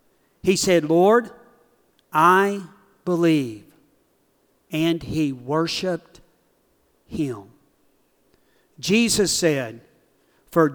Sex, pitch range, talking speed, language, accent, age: male, 140-180 Hz, 65 wpm, English, American, 50-69